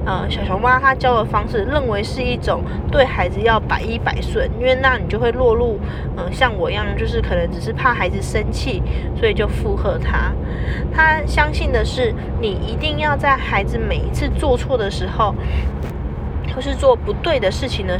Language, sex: Chinese, female